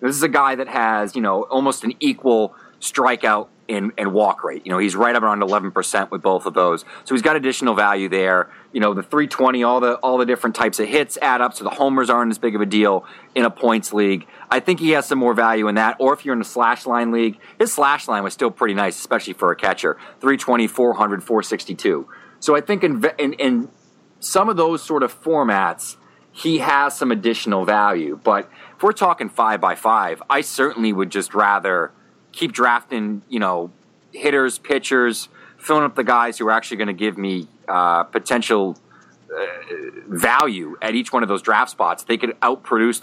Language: English